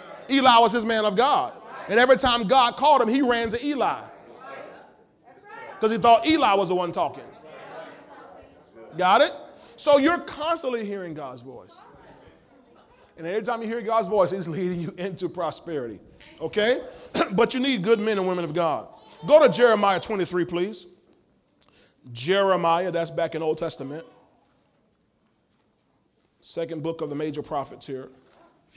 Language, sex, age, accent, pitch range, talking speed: English, male, 30-49, American, 165-235 Hz, 150 wpm